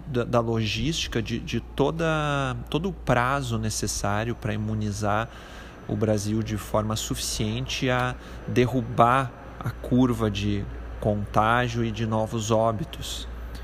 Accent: Brazilian